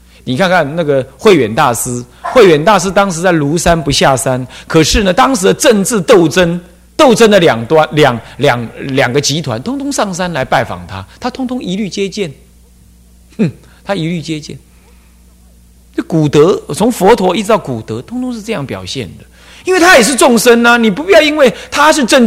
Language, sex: Chinese, male